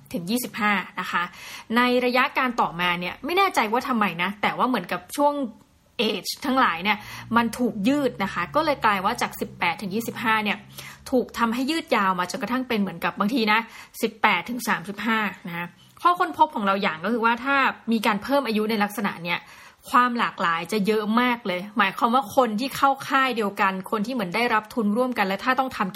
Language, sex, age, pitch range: Thai, female, 20-39, 205-255 Hz